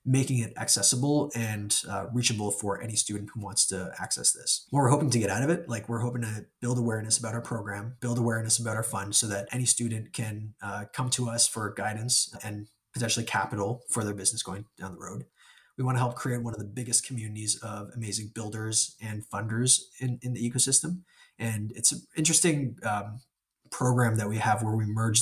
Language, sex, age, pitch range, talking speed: English, male, 20-39, 105-125 Hz, 210 wpm